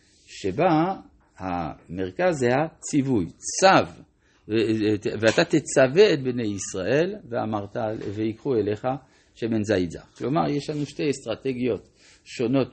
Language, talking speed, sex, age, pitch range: Hebrew, 110 wpm, male, 50-69, 110-150 Hz